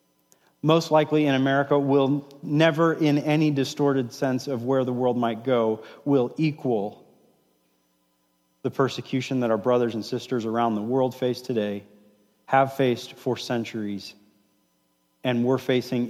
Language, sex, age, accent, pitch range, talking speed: English, male, 40-59, American, 110-140 Hz, 140 wpm